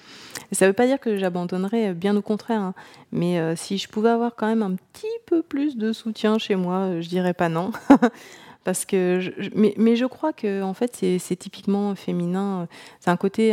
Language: French